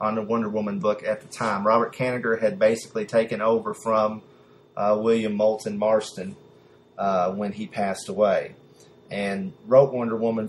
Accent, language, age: American, English, 30-49